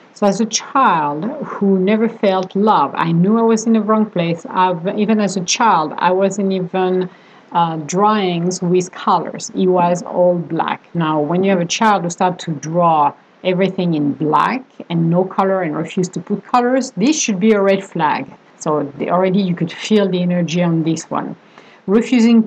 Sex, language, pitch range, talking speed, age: female, English, 170-200 Hz, 190 wpm, 50-69